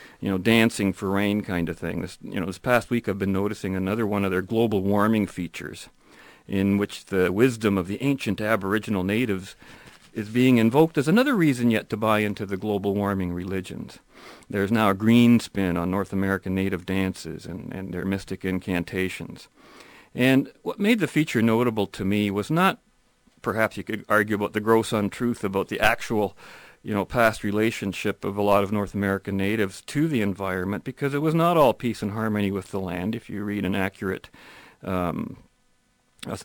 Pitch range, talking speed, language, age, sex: 95-115 Hz, 185 wpm, English, 40-59, male